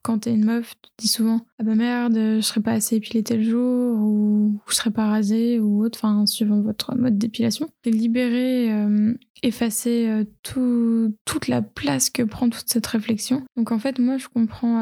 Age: 20-39